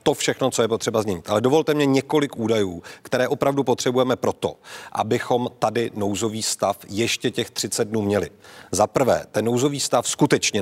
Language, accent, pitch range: Czech, native, 110-130 Hz